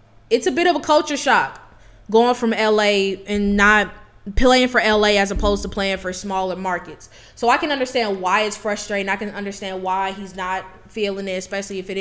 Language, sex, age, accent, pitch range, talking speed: English, female, 10-29, American, 190-280 Hz, 200 wpm